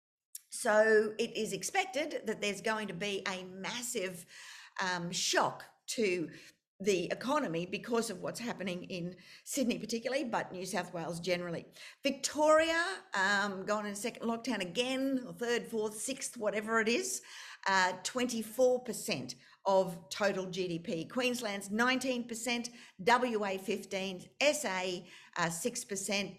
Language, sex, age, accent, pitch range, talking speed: English, female, 50-69, Australian, 185-230 Hz, 115 wpm